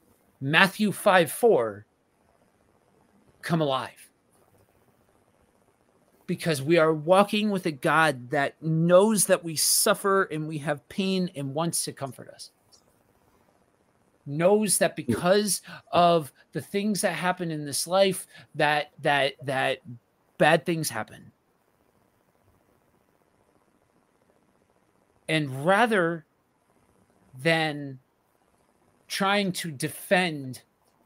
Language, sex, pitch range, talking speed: English, male, 130-175 Hz, 95 wpm